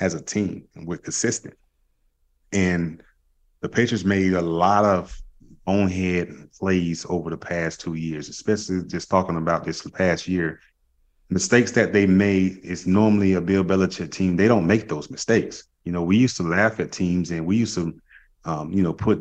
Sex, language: male, English